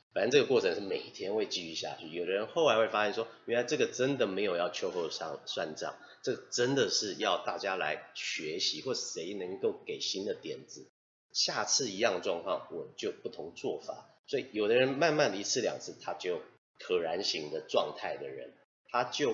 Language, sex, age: Chinese, male, 30-49